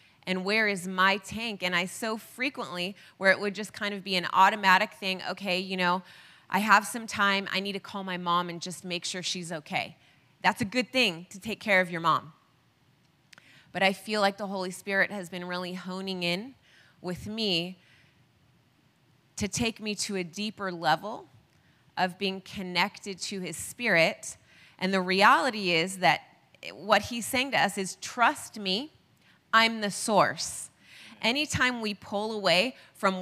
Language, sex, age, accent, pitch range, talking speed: English, female, 20-39, American, 175-205 Hz, 175 wpm